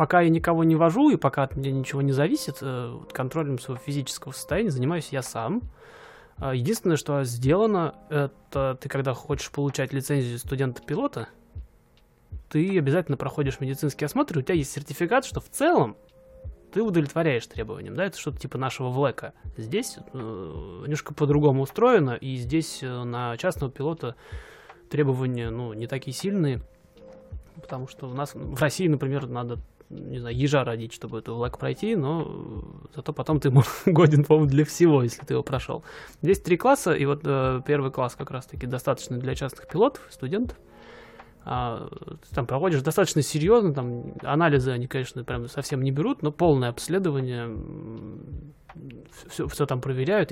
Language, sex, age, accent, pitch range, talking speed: Russian, male, 20-39, native, 130-160 Hz, 155 wpm